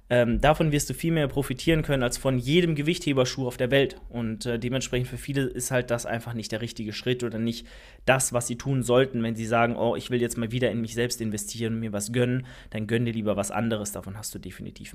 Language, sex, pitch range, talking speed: German, male, 120-145 Hz, 250 wpm